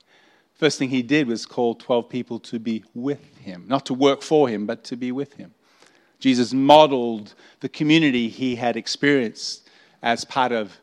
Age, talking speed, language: 40-59, 175 wpm, English